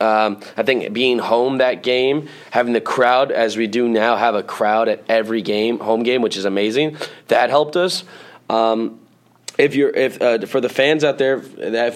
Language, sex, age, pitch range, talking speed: English, male, 20-39, 115-145 Hz, 195 wpm